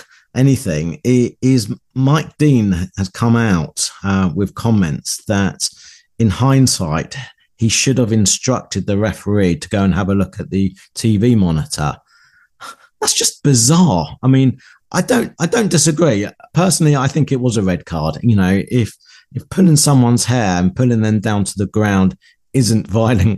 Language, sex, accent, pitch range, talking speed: English, male, British, 95-130 Hz, 160 wpm